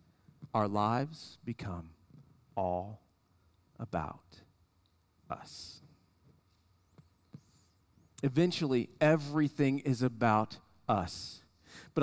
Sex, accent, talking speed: male, American, 60 wpm